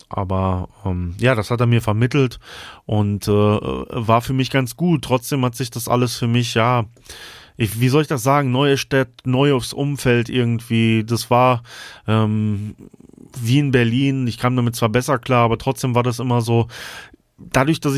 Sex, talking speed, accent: male, 185 wpm, German